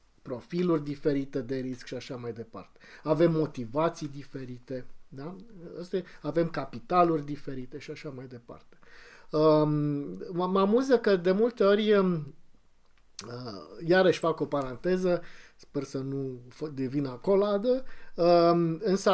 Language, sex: Romanian, male